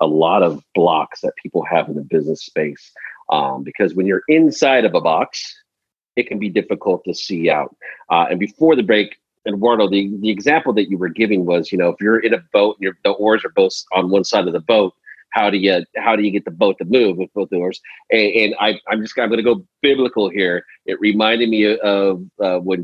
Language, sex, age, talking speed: English, male, 40-59, 235 wpm